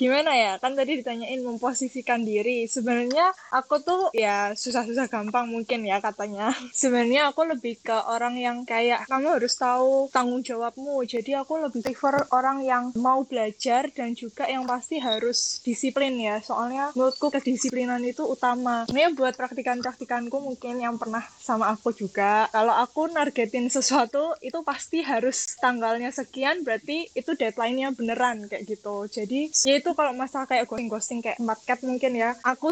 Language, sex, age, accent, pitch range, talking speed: Indonesian, female, 10-29, native, 235-275 Hz, 155 wpm